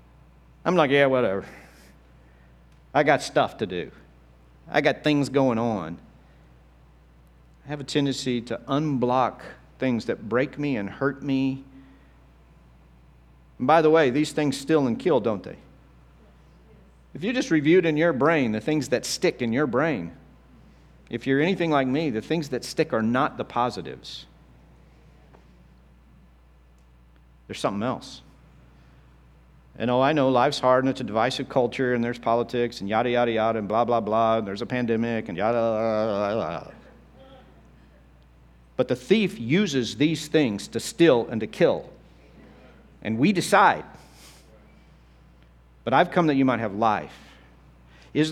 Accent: American